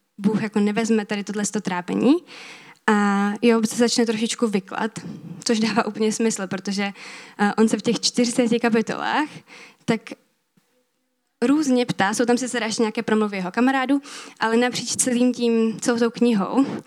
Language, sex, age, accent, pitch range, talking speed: Czech, female, 20-39, native, 205-245 Hz, 150 wpm